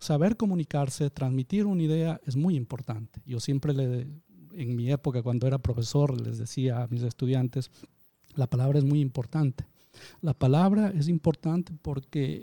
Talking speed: 155 wpm